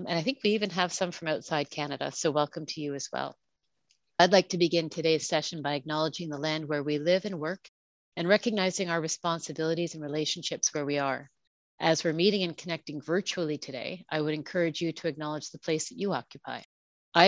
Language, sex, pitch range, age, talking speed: English, female, 150-175 Hz, 40-59, 205 wpm